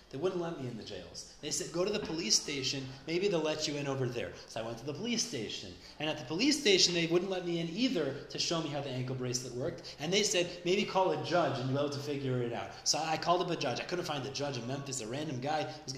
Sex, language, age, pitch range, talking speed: male, English, 30-49, 135-180 Hz, 290 wpm